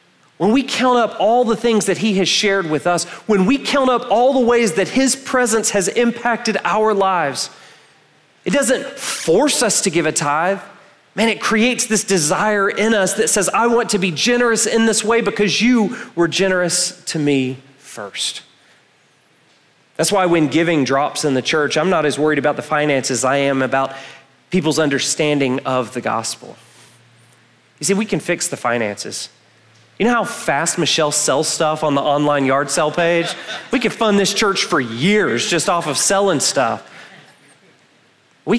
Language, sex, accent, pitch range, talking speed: English, male, American, 135-205 Hz, 180 wpm